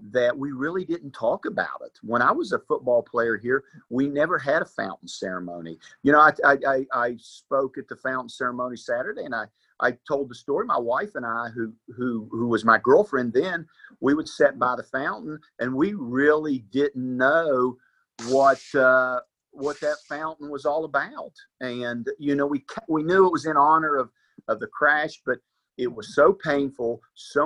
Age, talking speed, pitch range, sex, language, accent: 50-69, 190 wpm, 115-145 Hz, male, English, American